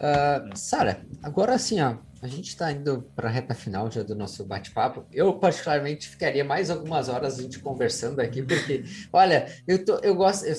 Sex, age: male, 20-39